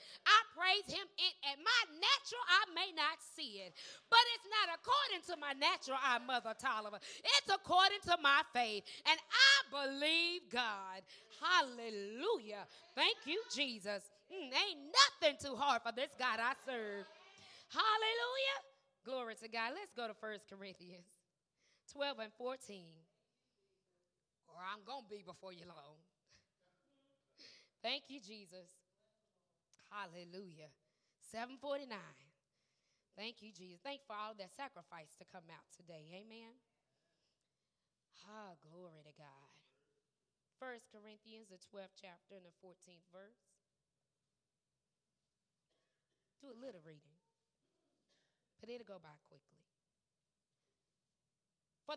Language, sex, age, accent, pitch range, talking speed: English, female, 20-39, American, 185-280 Hz, 125 wpm